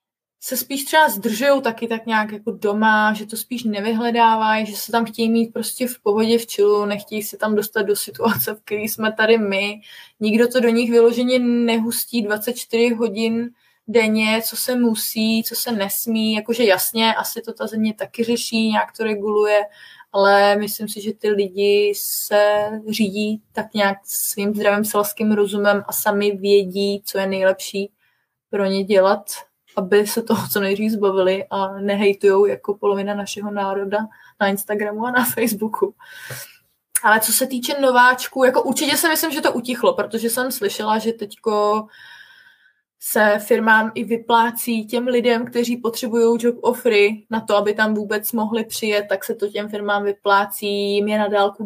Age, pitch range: 20-39, 205-230 Hz